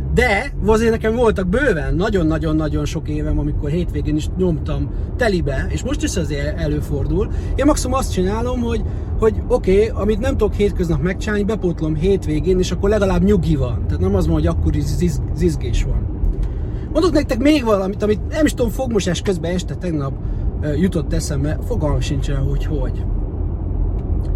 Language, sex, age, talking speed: Hungarian, male, 30-49, 160 wpm